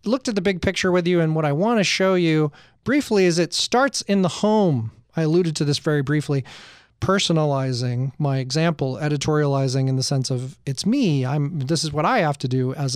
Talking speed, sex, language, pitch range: 215 wpm, male, English, 135-185 Hz